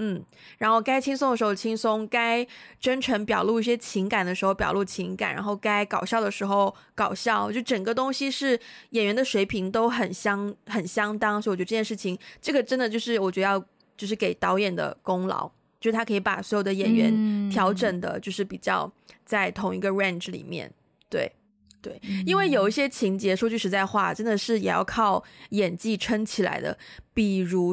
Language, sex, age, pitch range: Chinese, female, 20-39, 195-230 Hz